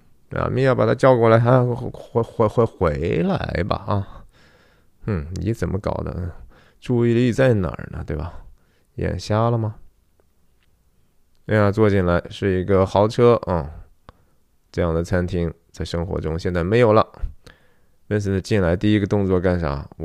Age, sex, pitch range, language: 20-39, male, 85-110 Hz, Chinese